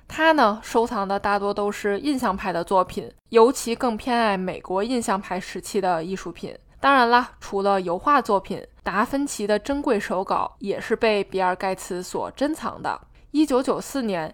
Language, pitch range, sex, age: Chinese, 195-245 Hz, female, 20-39